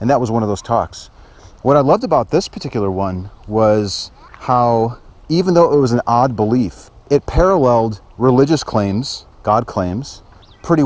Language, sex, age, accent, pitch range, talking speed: English, male, 40-59, American, 100-135 Hz, 165 wpm